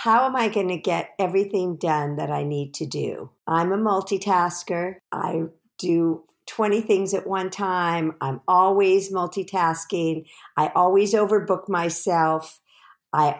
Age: 50-69